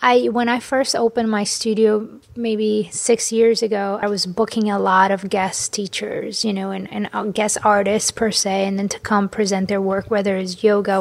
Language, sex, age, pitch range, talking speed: English, female, 20-39, 200-230 Hz, 200 wpm